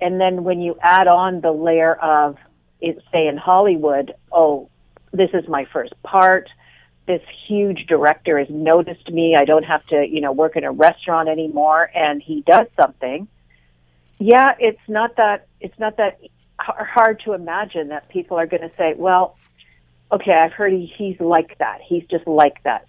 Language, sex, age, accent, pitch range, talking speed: English, female, 50-69, American, 150-195 Hz, 175 wpm